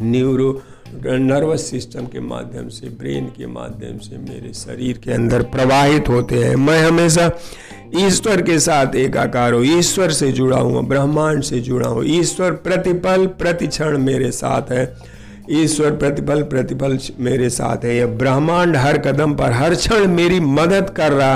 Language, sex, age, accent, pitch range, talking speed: Hindi, male, 50-69, native, 125-165 Hz, 155 wpm